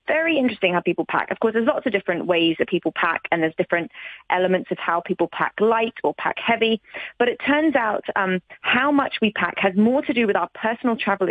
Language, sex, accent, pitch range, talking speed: English, female, British, 185-235 Hz, 235 wpm